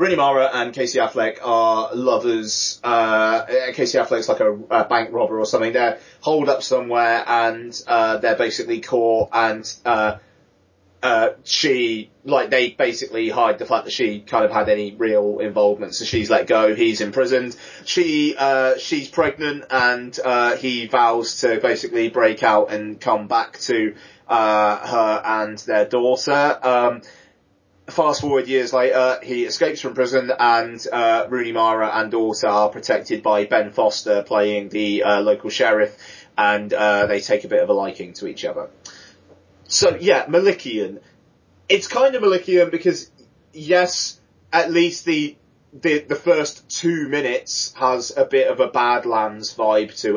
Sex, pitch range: male, 110-155 Hz